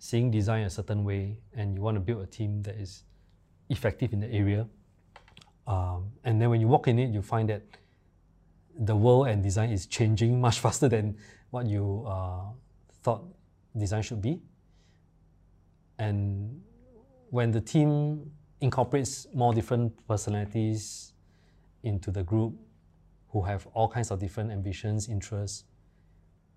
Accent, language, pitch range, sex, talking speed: Malaysian, English, 95-115 Hz, male, 145 wpm